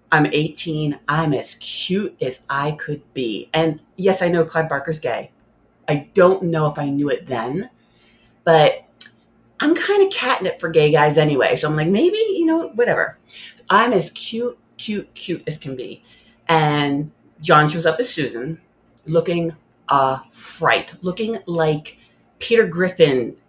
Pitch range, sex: 150-205 Hz, female